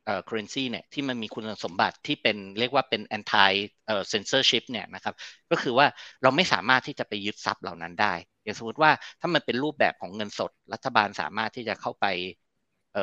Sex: male